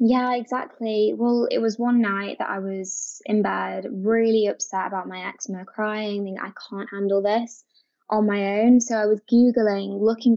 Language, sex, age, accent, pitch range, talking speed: English, female, 20-39, British, 200-235 Hz, 175 wpm